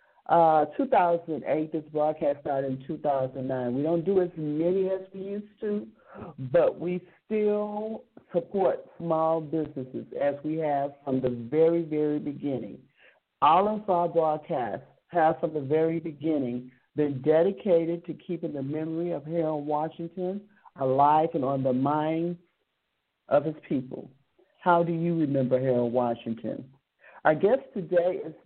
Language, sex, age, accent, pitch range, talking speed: English, male, 50-69, American, 145-185 Hz, 140 wpm